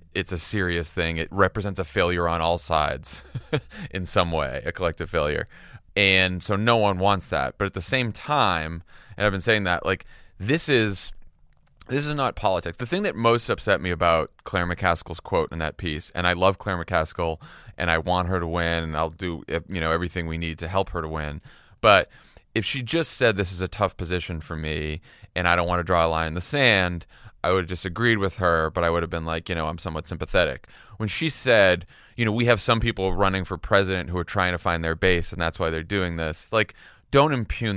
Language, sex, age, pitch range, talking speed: English, male, 30-49, 85-110 Hz, 230 wpm